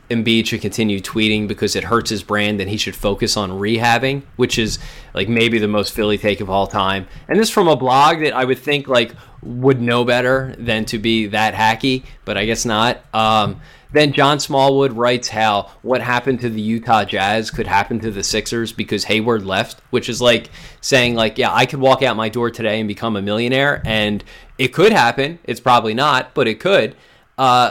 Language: English